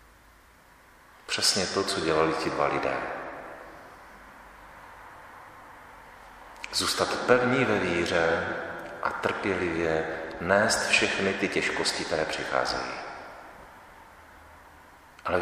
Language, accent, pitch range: Czech, native, 70-90 Hz